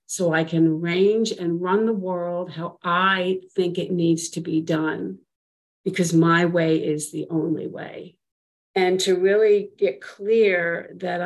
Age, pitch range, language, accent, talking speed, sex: 50-69, 165-185 Hz, English, American, 155 wpm, female